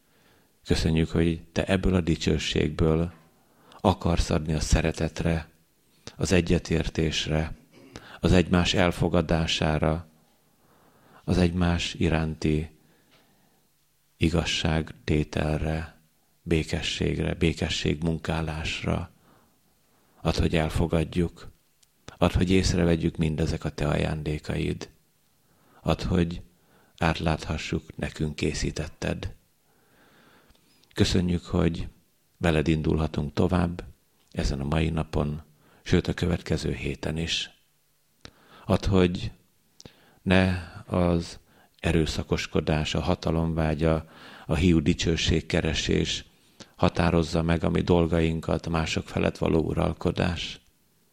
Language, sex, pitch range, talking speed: Hungarian, male, 80-85 Hz, 85 wpm